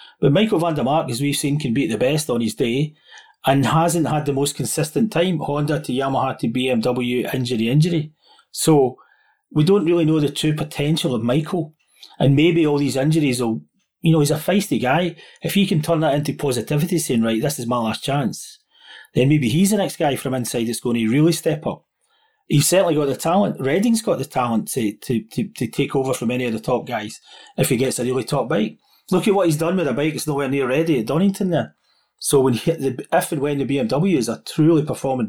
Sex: male